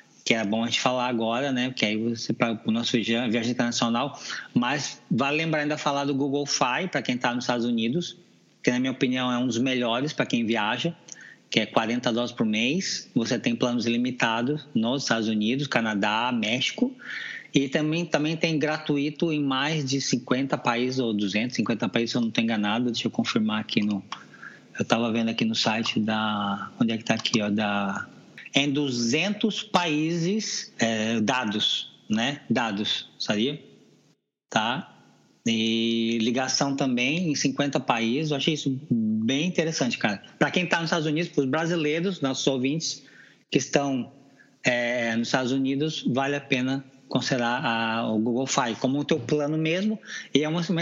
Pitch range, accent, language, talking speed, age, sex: 120-155 Hz, Brazilian, Portuguese, 175 wpm, 20-39, male